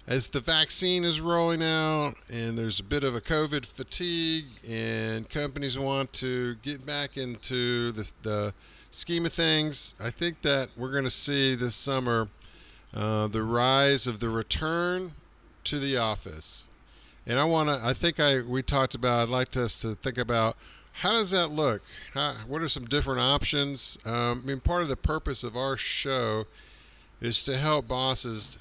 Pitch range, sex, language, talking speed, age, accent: 110-140 Hz, male, English, 175 wpm, 50-69, American